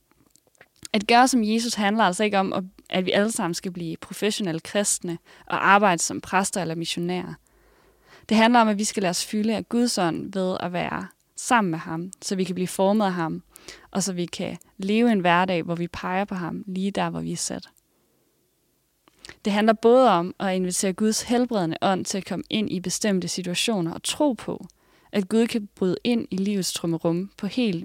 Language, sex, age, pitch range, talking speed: English, female, 20-39, 180-215 Hz, 200 wpm